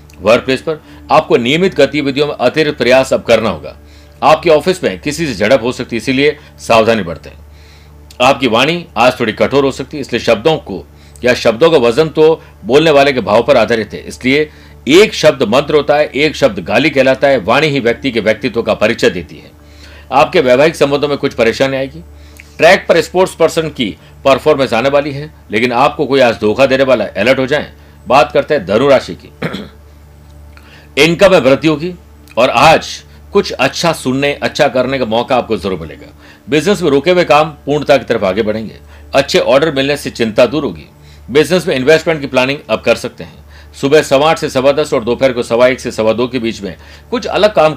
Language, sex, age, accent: Hindi, male, 60-79, native